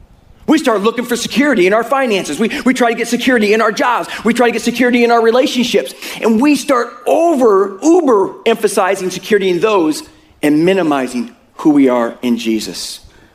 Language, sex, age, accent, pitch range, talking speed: English, male, 40-59, American, 190-275 Hz, 185 wpm